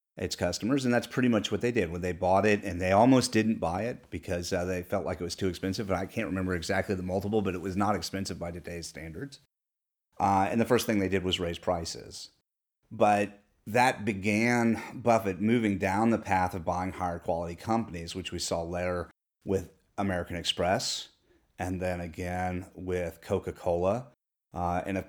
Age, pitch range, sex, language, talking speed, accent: 30-49, 90-105 Hz, male, English, 195 wpm, American